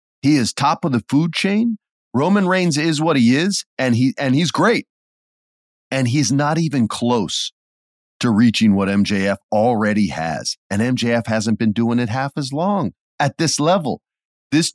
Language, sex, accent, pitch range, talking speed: English, male, American, 115-180 Hz, 170 wpm